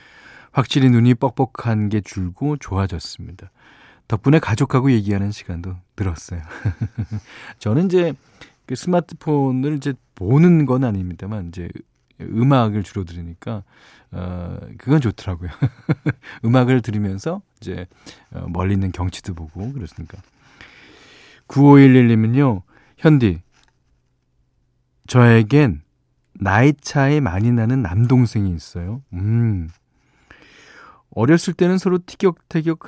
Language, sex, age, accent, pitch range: Korean, male, 40-59, native, 95-135 Hz